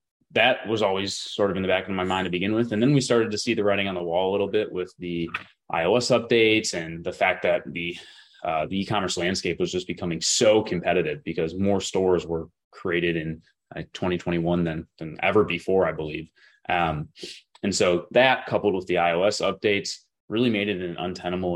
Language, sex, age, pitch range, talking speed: English, male, 20-39, 85-100 Hz, 205 wpm